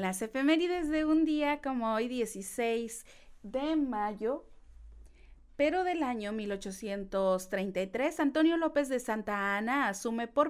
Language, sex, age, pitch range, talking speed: Spanish, female, 30-49, 220-280 Hz, 120 wpm